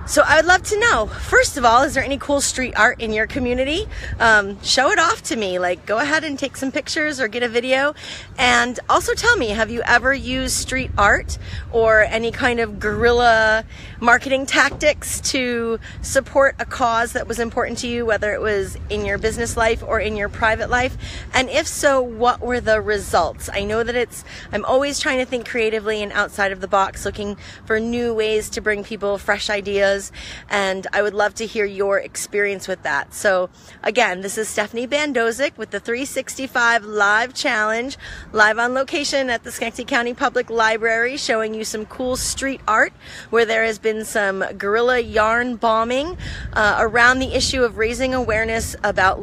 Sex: female